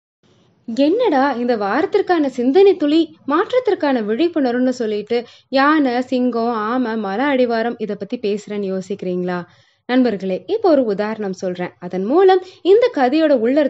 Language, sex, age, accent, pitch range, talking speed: Tamil, female, 20-39, native, 200-285 Hz, 120 wpm